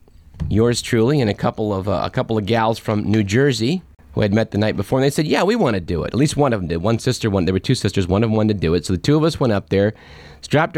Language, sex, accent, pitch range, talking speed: English, male, American, 90-135 Hz, 325 wpm